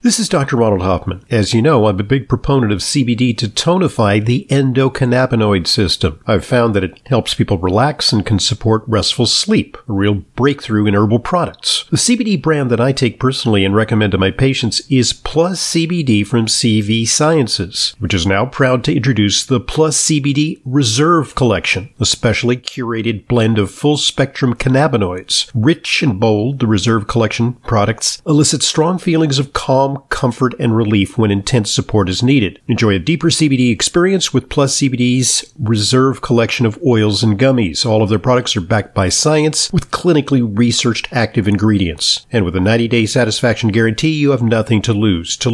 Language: English